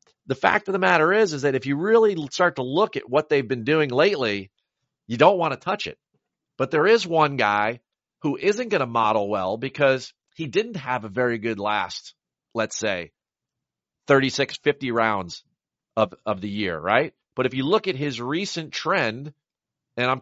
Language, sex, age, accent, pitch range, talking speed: English, male, 40-59, American, 115-155 Hz, 190 wpm